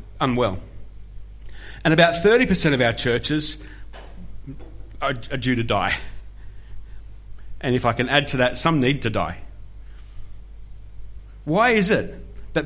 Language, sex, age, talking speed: English, male, 40-59, 125 wpm